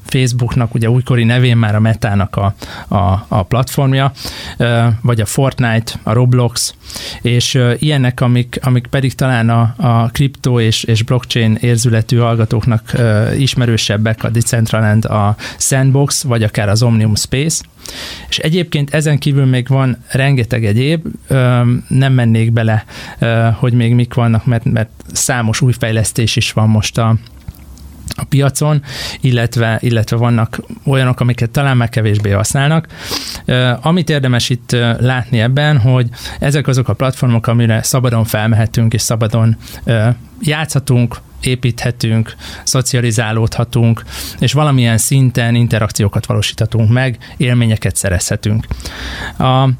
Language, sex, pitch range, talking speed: Hungarian, male, 110-130 Hz, 120 wpm